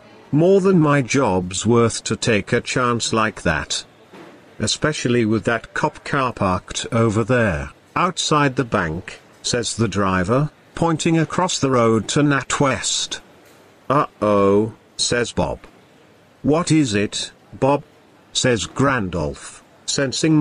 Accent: British